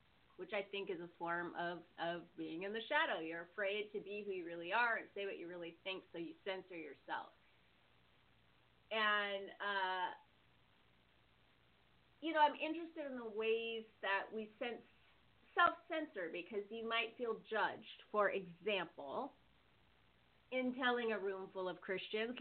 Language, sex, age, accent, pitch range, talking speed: English, female, 30-49, American, 185-270 Hz, 155 wpm